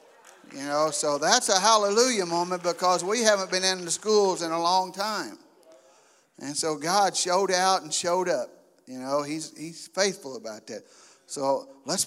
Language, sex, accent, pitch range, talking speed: English, male, American, 165-220 Hz, 175 wpm